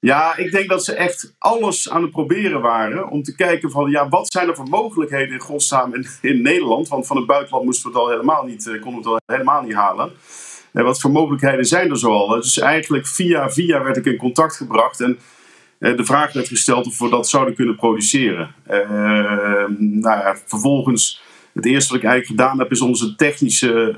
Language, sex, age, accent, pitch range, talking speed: Dutch, male, 50-69, Dutch, 115-145 Hz, 190 wpm